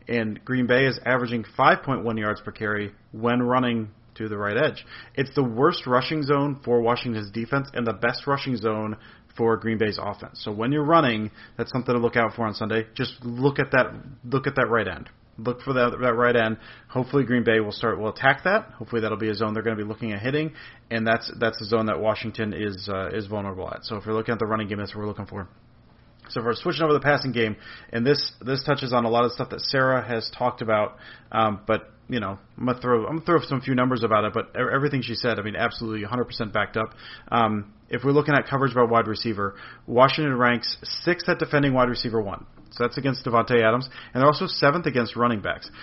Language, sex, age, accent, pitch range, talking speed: English, male, 30-49, American, 110-130 Hz, 235 wpm